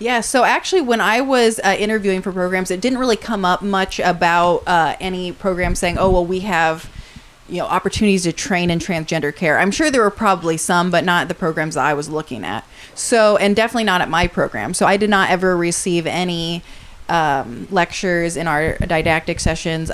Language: English